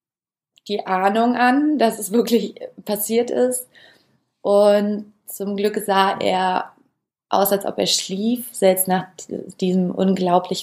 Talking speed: 125 wpm